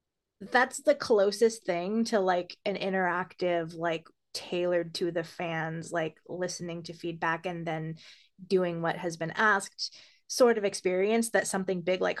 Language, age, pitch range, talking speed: English, 20-39, 180-225 Hz, 150 wpm